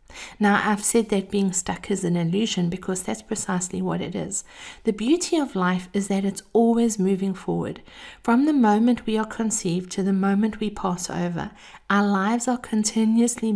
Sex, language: female, English